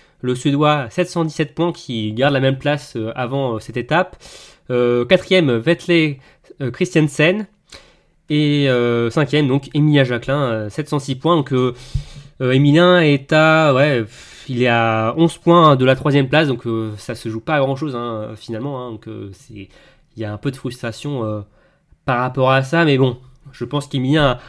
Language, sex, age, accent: French, male, 20-39, French